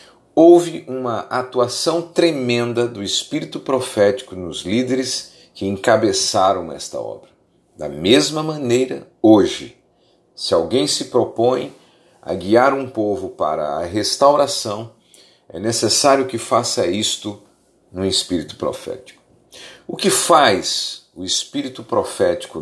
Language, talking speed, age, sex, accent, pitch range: Portuguese, 110 wpm, 50-69, male, Brazilian, 105-155 Hz